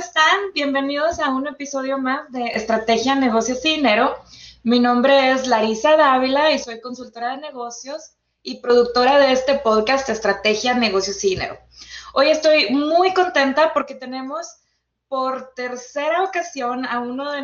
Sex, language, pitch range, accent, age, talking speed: female, English, 235-275 Hz, Mexican, 20-39, 145 wpm